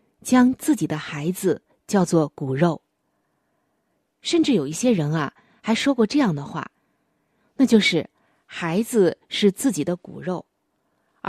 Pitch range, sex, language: 165-245 Hz, female, Chinese